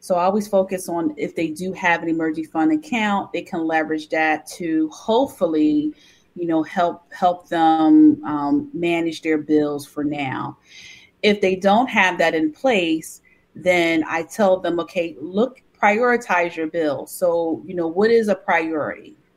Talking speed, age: 165 wpm, 30-49